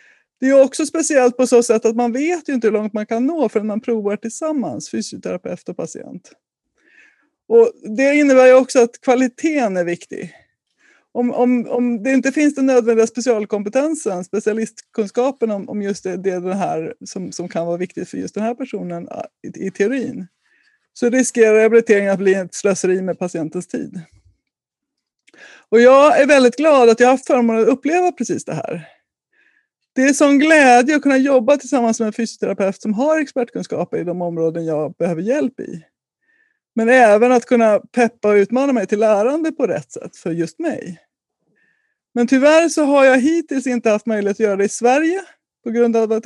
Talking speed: 190 wpm